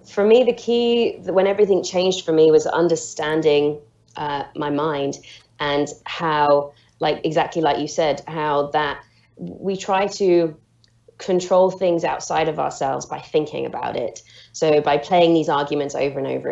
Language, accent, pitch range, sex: English, British, 155-195 Hz, female